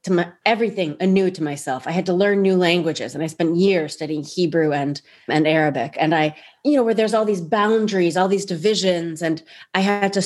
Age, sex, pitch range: 30-49, female, 160-205 Hz